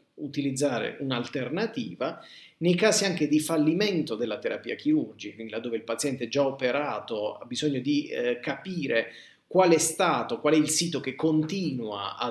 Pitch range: 115-155 Hz